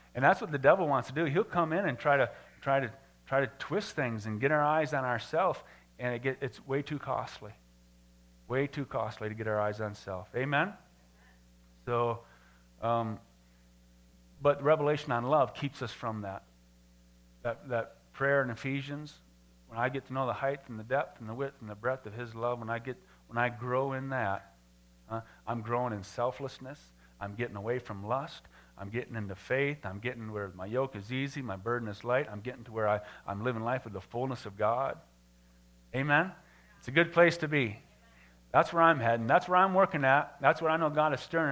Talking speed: 210 wpm